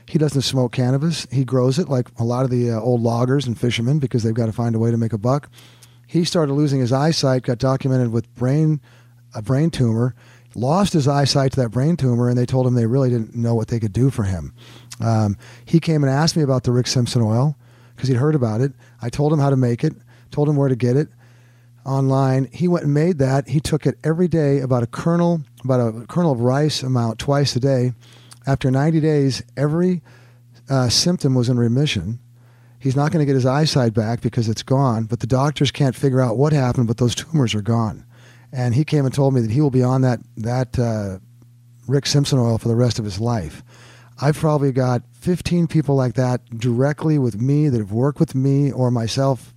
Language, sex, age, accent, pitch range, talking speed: English, male, 40-59, American, 120-140 Hz, 225 wpm